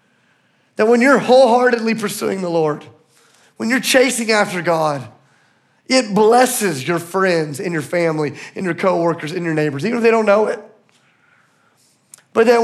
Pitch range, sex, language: 150-210 Hz, male, English